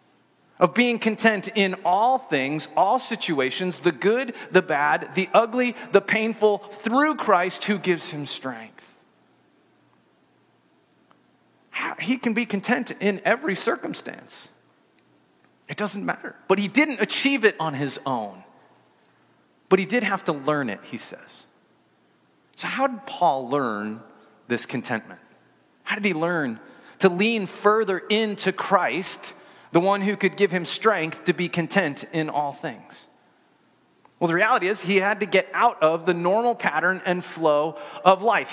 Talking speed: 150 wpm